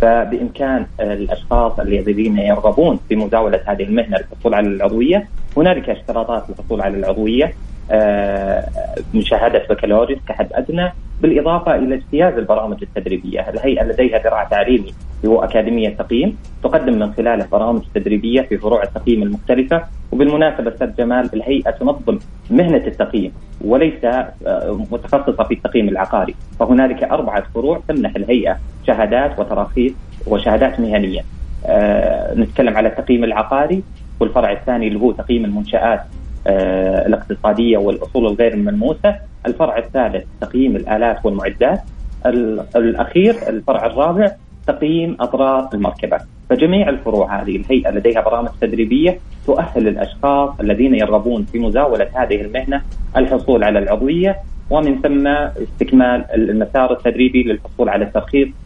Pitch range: 105-135 Hz